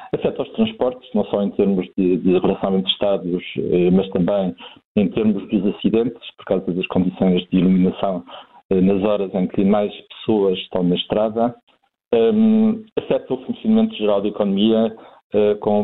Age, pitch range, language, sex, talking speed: 50-69, 95-125 Hz, Portuguese, male, 150 wpm